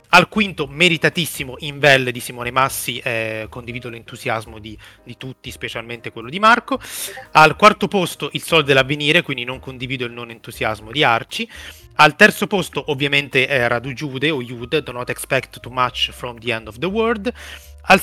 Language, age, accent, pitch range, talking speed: Italian, 30-49, native, 120-155 Hz, 180 wpm